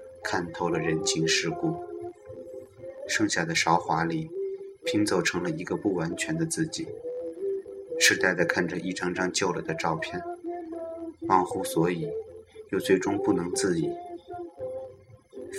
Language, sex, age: Chinese, male, 30-49